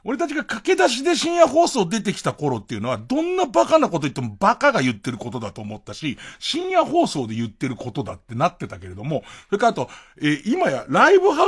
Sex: male